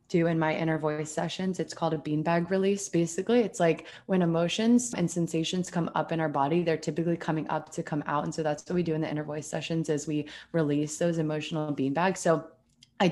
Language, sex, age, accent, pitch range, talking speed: English, female, 20-39, American, 155-180 Hz, 225 wpm